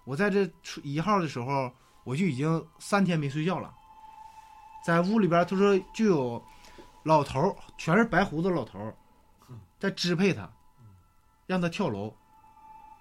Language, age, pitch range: Chinese, 20-39, 135-215 Hz